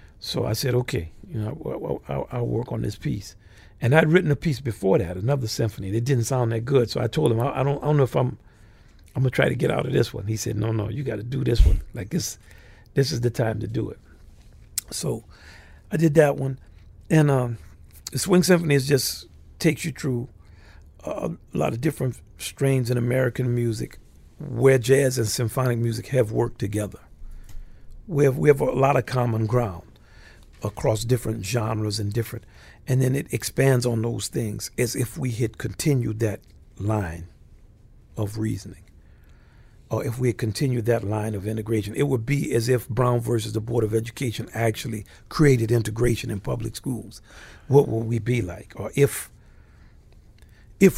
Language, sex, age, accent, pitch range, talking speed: English, male, 50-69, American, 105-130 Hz, 195 wpm